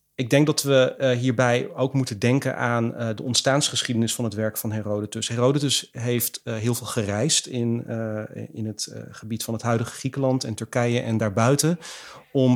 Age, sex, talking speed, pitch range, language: 30-49, male, 185 wpm, 115-130 Hz, Dutch